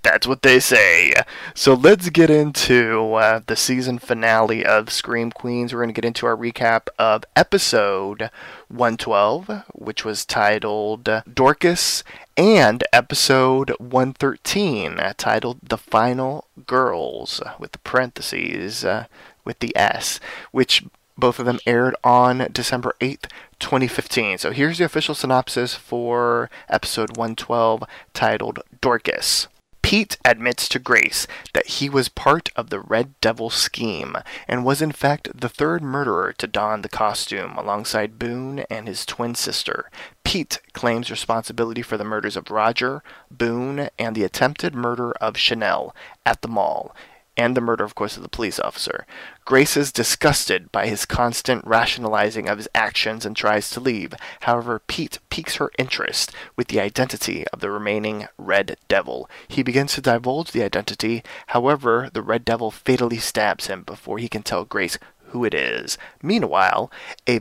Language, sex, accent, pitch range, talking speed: English, male, American, 110-130 Hz, 150 wpm